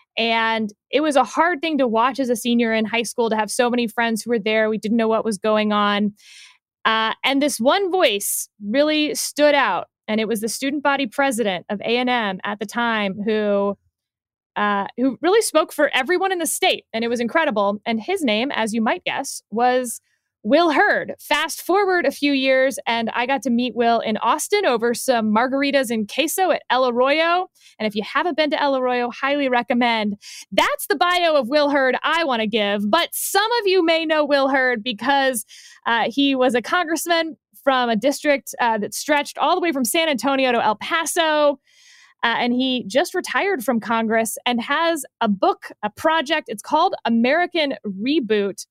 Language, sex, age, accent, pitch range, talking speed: English, female, 20-39, American, 225-305 Hz, 195 wpm